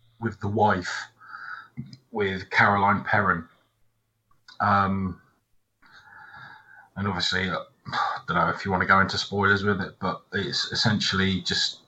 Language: English